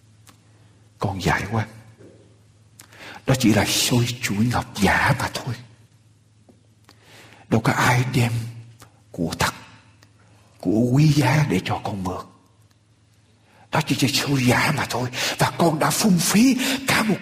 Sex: male